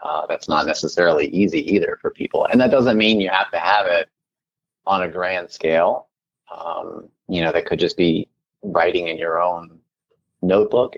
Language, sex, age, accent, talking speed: English, male, 30-49, American, 180 wpm